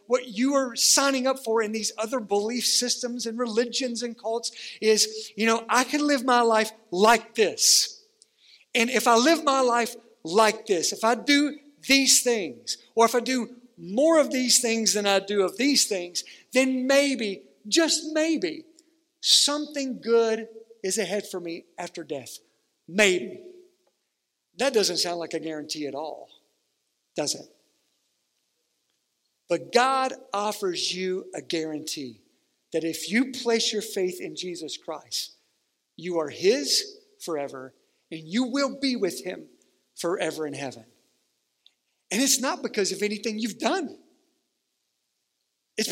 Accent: American